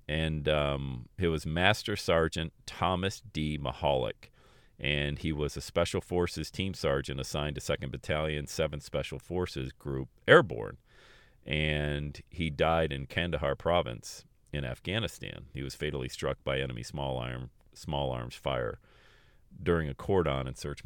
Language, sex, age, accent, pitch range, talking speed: English, male, 40-59, American, 75-110 Hz, 145 wpm